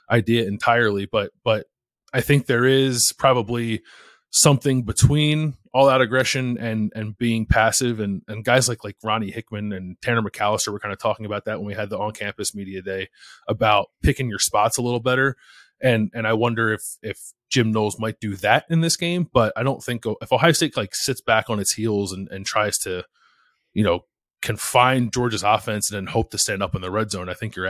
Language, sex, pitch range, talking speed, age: English, male, 100-120 Hz, 210 wpm, 20-39